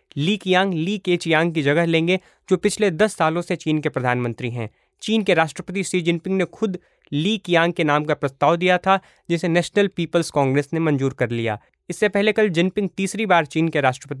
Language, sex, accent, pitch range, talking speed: Hindi, male, native, 150-190 Hz, 150 wpm